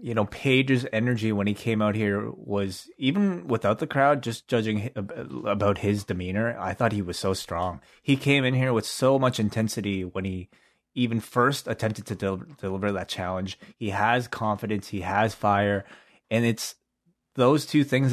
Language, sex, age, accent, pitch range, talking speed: English, male, 20-39, American, 100-120 Hz, 175 wpm